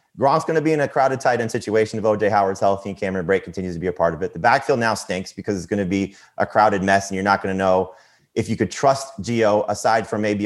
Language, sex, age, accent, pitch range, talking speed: English, male, 30-49, American, 95-130 Hz, 285 wpm